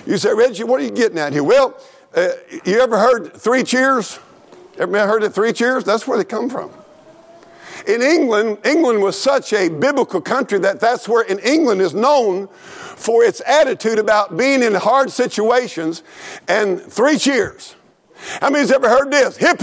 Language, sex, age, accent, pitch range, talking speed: English, male, 50-69, American, 245-355 Hz, 180 wpm